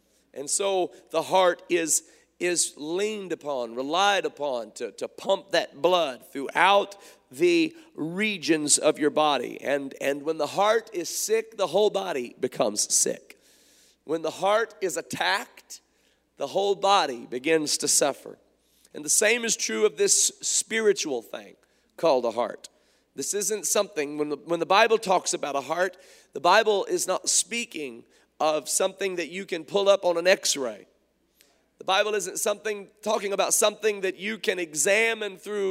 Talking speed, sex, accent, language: 160 wpm, male, American, English